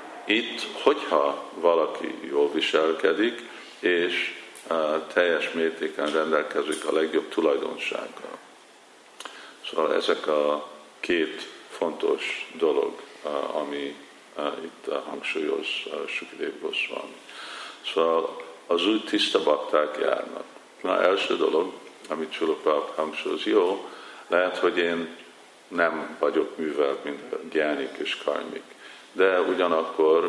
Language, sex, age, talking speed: Hungarian, male, 50-69, 105 wpm